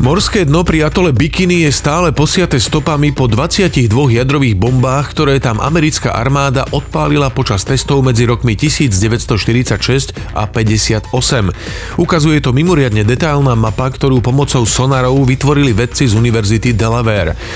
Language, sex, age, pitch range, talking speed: Slovak, male, 40-59, 110-135 Hz, 130 wpm